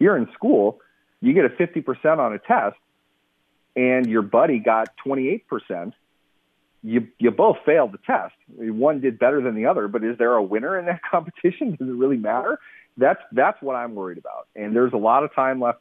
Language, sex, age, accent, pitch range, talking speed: English, male, 40-59, American, 95-120 Hz, 195 wpm